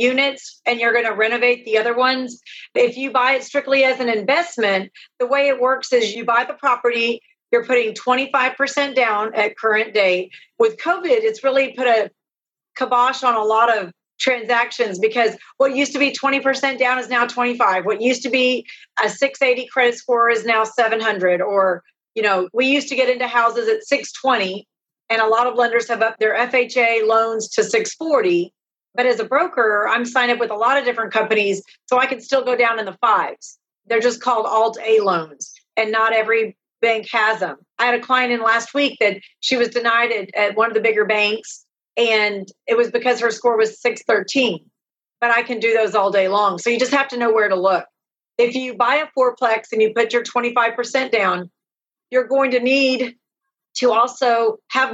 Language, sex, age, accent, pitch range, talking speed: English, female, 40-59, American, 220-255 Hz, 200 wpm